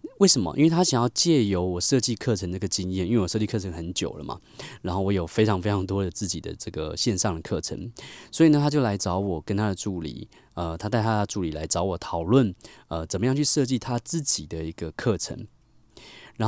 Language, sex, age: Chinese, male, 20-39